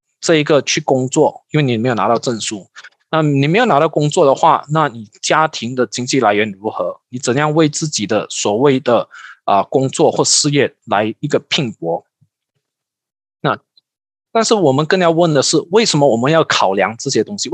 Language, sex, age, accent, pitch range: Chinese, male, 20-39, native, 120-165 Hz